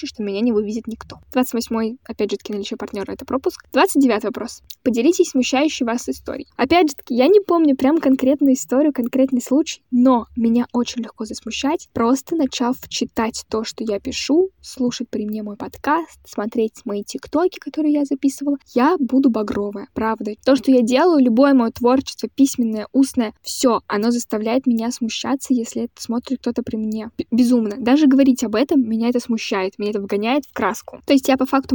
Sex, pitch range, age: female, 230-275 Hz, 10-29